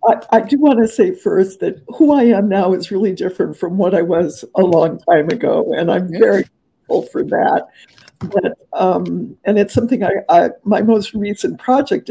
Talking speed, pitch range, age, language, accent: 185 wpm, 185-235 Hz, 50-69, English, American